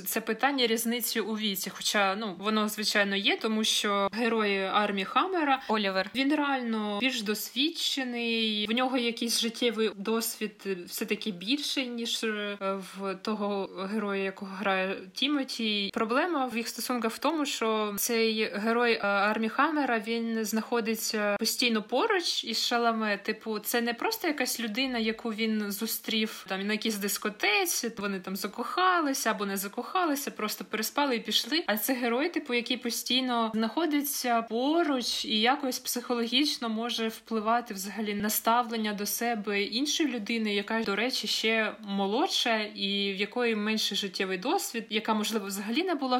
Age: 20-39